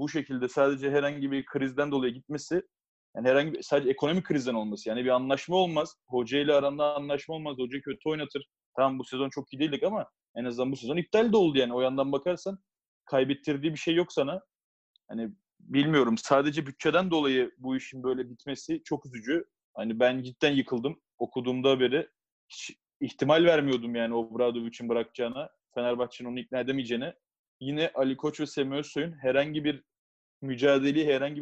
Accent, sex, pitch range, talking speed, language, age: native, male, 130-160 Hz, 170 wpm, Turkish, 30-49